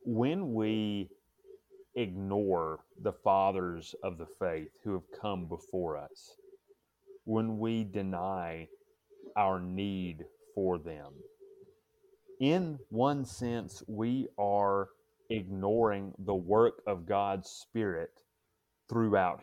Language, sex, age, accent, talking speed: English, male, 30-49, American, 100 wpm